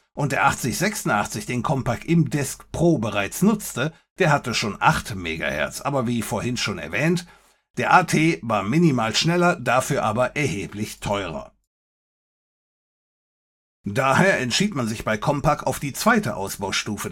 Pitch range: 110-165 Hz